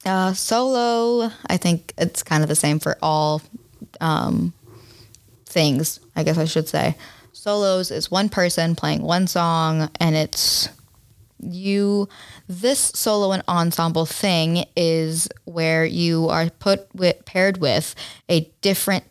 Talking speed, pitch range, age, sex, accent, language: 135 wpm, 155-190 Hz, 10-29, female, American, English